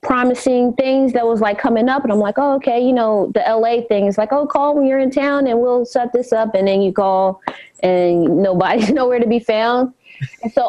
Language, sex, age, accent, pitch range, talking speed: English, female, 20-39, American, 180-245 Hz, 230 wpm